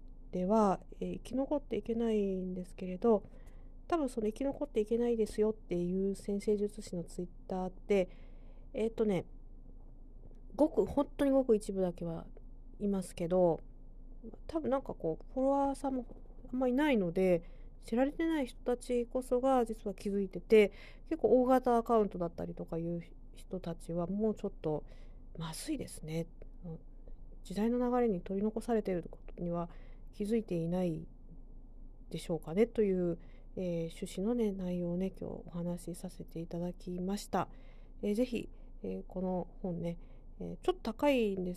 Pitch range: 175-230 Hz